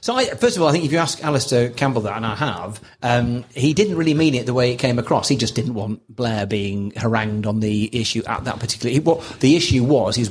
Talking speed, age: 275 wpm, 30-49